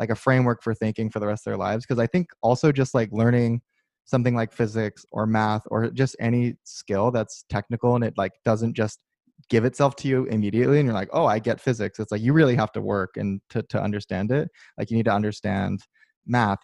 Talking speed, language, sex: 230 wpm, English, male